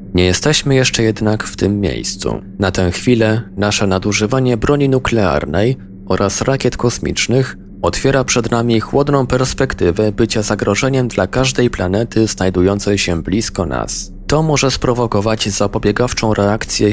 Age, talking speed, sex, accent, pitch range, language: 20-39, 130 wpm, male, native, 95-120 Hz, Polish